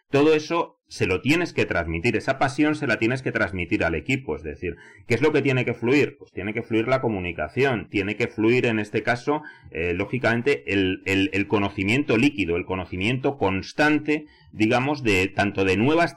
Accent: Spanish